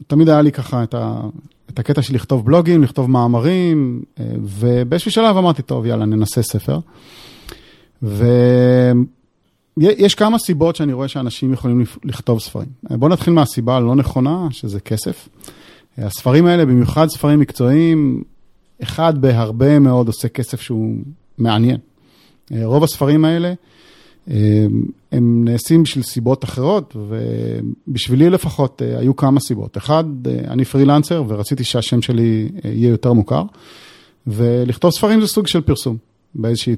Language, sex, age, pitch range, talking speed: Hebrew, male, 30-49, 115-145 Hz, 125 wpm